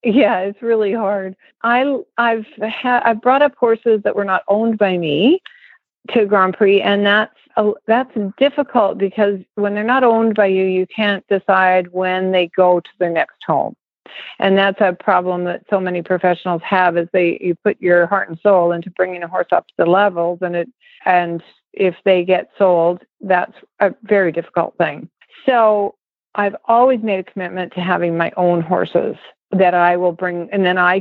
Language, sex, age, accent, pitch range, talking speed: English, female, 50-69, American, 180-220 Hz, 190 wpm